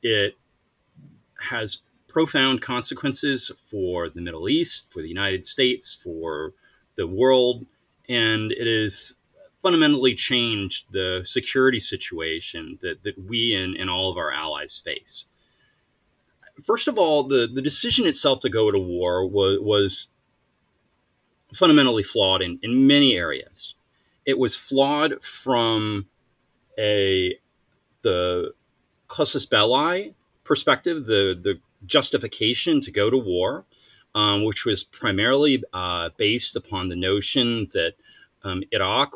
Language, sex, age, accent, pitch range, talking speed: English, male, 30-49, American, 95-130 Hz, 125 wpm